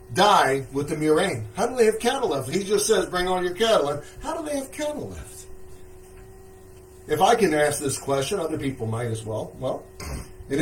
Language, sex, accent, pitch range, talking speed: English, male, American, 120-180 Hz, 205 wpm